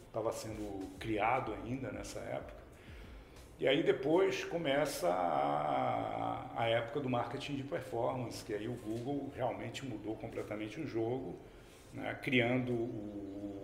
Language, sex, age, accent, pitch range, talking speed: Portuguese, male, 50-69, Brazilian, 105-130 Hz, 130 wpm